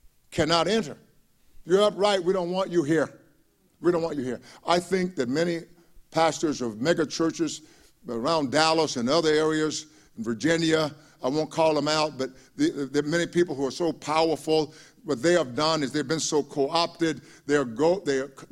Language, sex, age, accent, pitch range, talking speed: English, male, 50-69, American, 140-195 Hz, 180 wpm